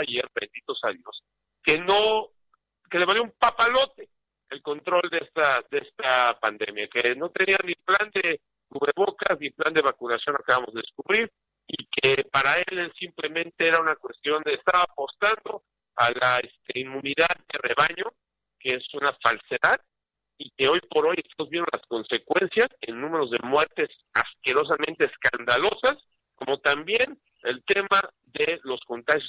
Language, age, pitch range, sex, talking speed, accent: Spanish, 50-69, 140-215 Hz, male, 155 wpm, Mexican